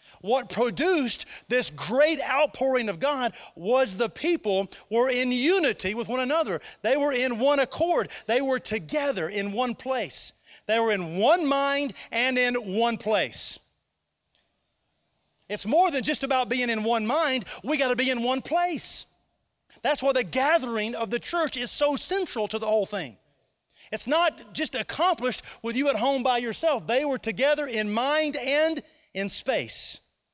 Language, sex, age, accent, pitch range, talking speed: English, male, 40-59, American, 185-260 Hz, 165 wpm